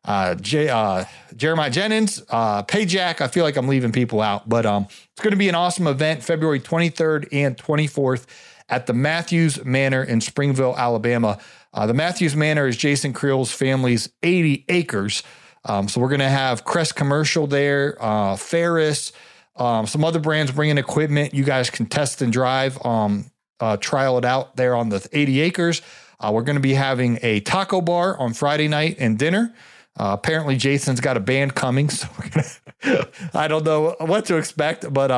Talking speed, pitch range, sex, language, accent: 185 wpm, 120-155 Hz, male, English, American